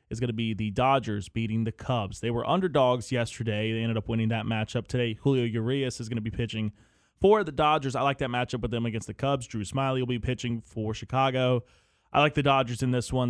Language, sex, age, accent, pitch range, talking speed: English, male, 20-39, American, 110-135 Hz, 240 wpm